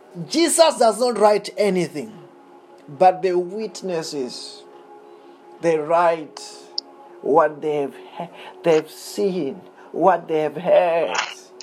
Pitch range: 155-220 Hz